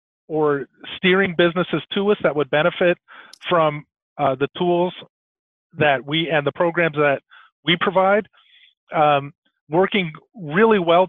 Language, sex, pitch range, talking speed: English, male, 150-180 Hz, 130 wpm